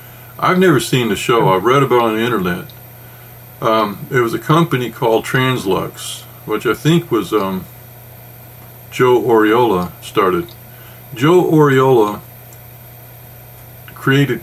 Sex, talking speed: male, 125 wpm